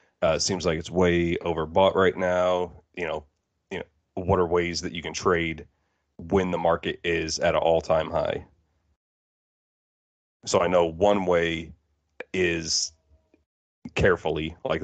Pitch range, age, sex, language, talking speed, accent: 80-90 Hz, 30-49, male, English, 140 wpm, American